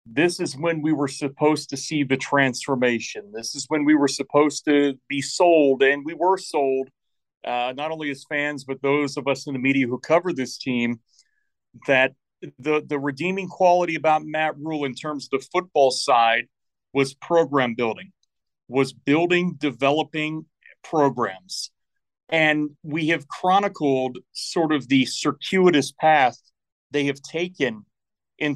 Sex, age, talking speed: male, 40-59, 155 wpm